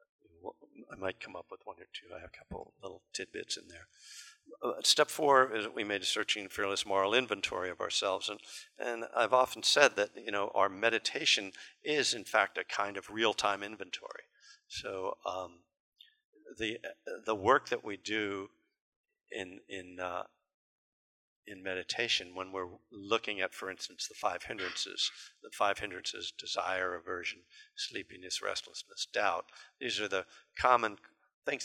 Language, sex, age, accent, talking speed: English, male, 50-69, American, 160 wpm